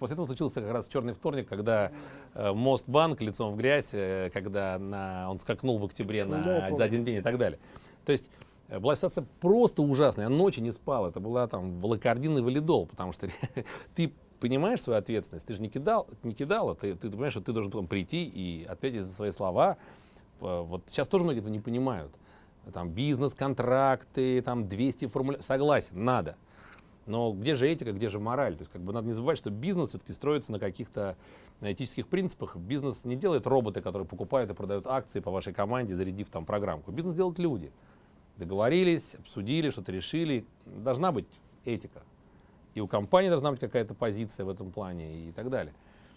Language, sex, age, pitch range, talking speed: Russian, male, 30-49, 100-140 Hz, 185 wpm